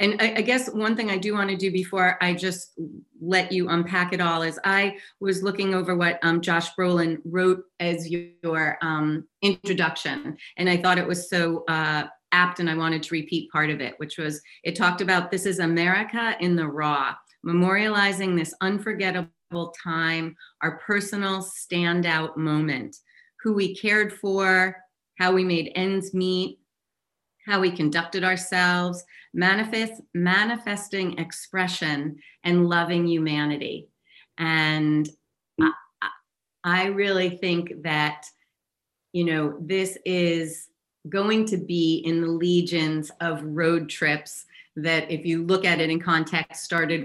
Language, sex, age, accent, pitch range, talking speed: English, female, 30-49, American, 160-185 Hz, 145 wpm